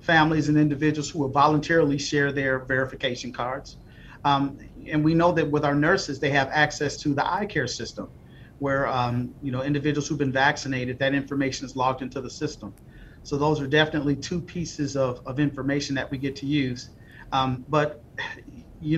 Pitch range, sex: 135-155 Hz, male